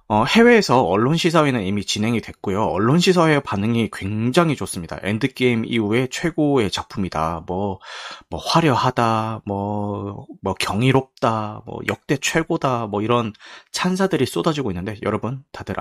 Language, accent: Korean, native